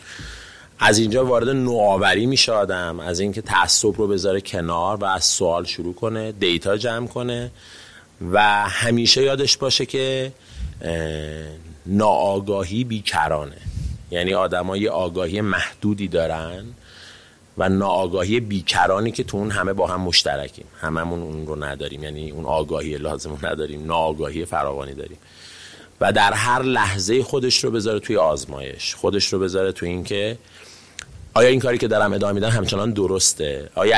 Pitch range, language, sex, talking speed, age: 85-110 Hz, Persian, male, 140 wpm, 30-49